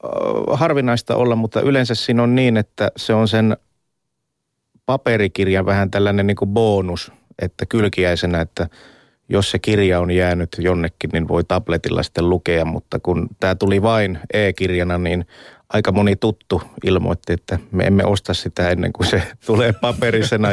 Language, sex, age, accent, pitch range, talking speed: Finnish, male, 30-49, native, 90-110 Hz, 150 wpm